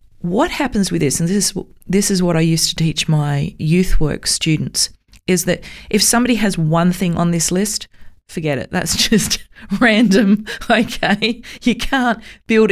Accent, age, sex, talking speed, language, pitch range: Australian, 30-49, female, 175 wpm, English, 155-205 Hz